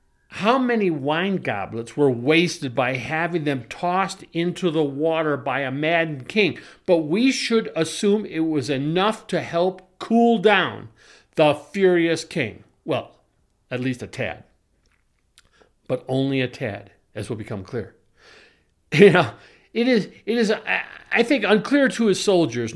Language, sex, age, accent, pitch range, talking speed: English, male, 50-69, American, 140-200 Hz, 150 wpm